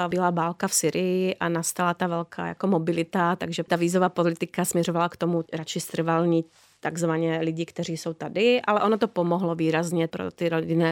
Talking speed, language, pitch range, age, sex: 175 wpm, Czech, 170-225 Hz, 30-49, female